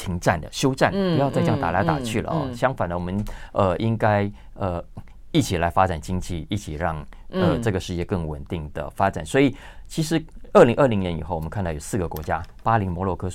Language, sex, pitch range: Chinese, male, 85-115 Hz